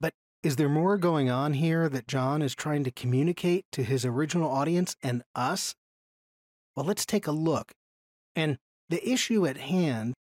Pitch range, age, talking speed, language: 130-185 Hz, 40-59, 160 wpm, English